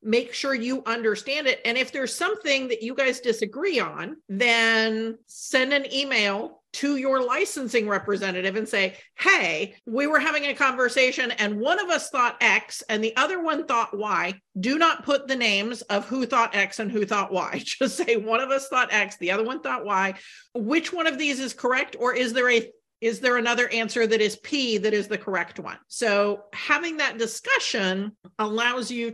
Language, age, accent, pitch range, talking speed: English, 50-69, American, 220-275 Hz, 195 wpm